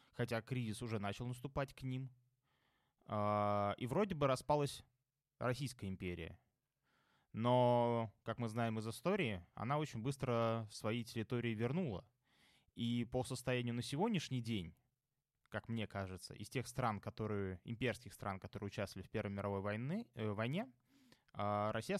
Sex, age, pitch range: male, 20-39, 105-135 Hz